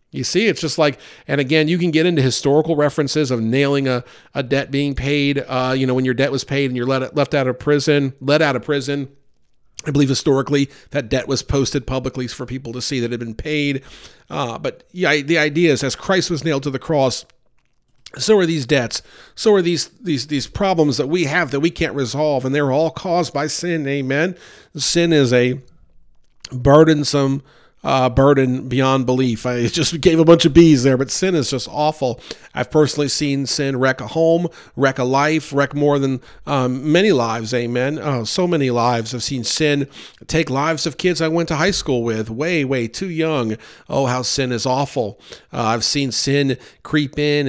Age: 50-69